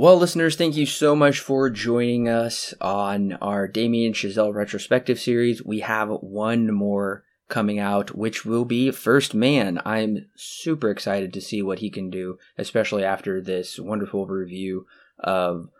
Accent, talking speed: American, 155 wpm